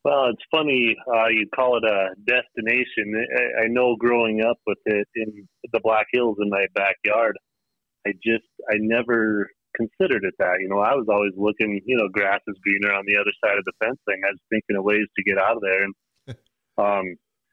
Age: 30-49